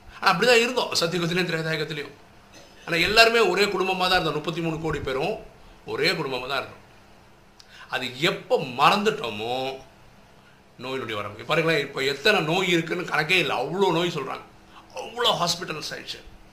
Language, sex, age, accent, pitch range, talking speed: Tamil, male, 50-69, native, 135-180 Hz, 140 wpm